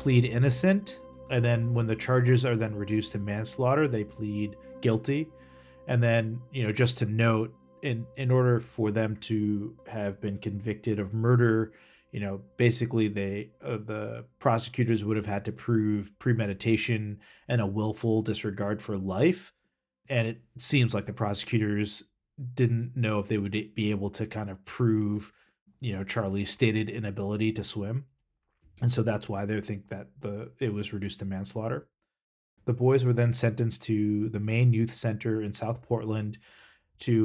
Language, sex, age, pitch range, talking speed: English, male, 40-59, 105-120 Hz, 165 wpm